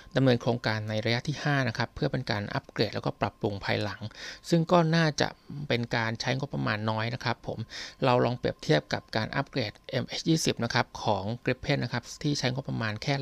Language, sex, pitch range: Thai, male, 110-135 Hz